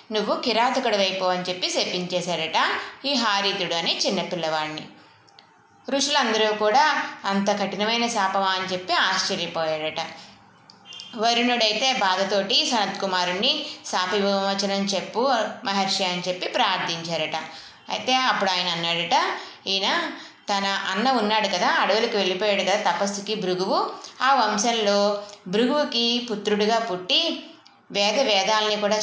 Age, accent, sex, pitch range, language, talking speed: 20-39, native, female, 185-240 Hz, Telugu, 100 wpm